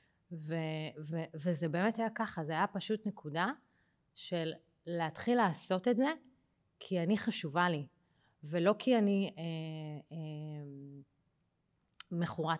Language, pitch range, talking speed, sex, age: Hebrew, 155-205 Hz, 125 wpm, female, 30-49